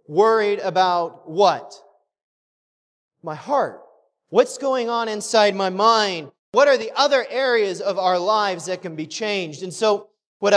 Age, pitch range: 30-49, 165-215 Hz